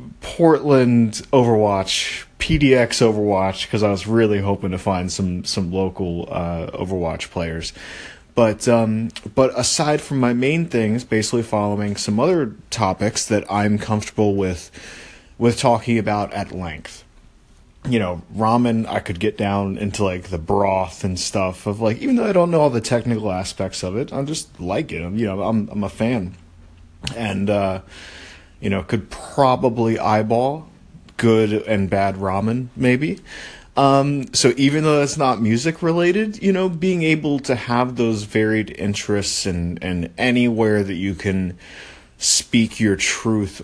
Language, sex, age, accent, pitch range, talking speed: English, male, 30-49, American, 95-120 Hz, 155 wpm